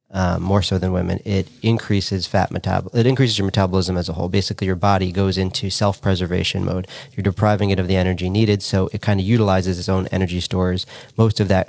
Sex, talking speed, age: male, 215 wpm, 30-49